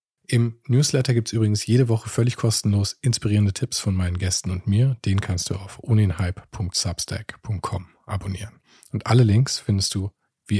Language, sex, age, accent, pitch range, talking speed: German, male, 40-59, German, 95-115 Hz, 160 wpm